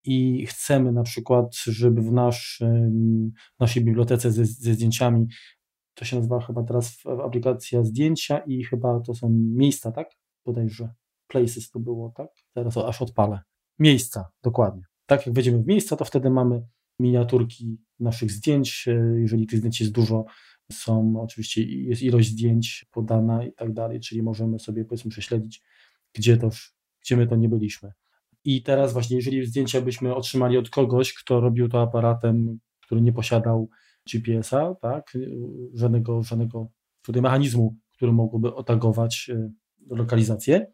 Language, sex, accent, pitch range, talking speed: Polish, male, native, 115-130 Hz, 150 wpm